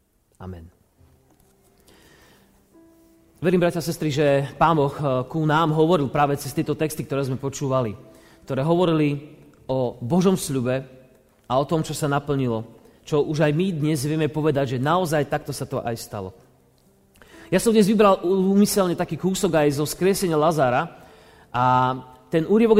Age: 30-49